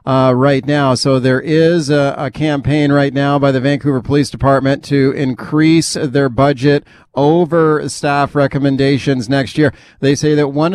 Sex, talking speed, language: male, 160 wpm, English